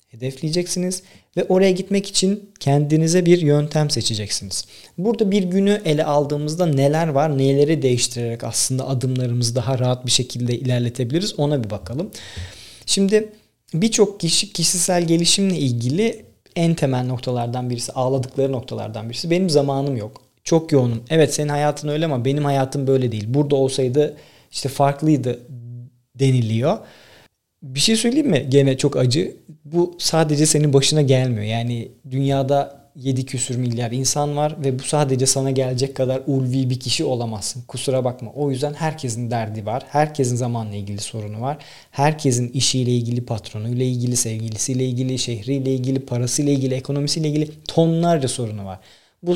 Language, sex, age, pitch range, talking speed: Turkish, male, 40-59, 125-155 Hz, 145 wpm